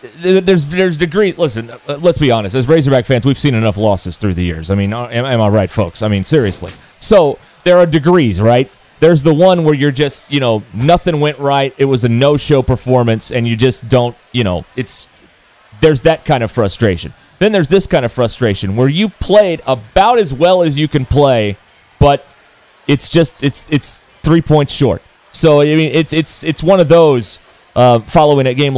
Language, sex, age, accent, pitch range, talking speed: English, male, 30-49, American, 120-155 Hz, 200 wpm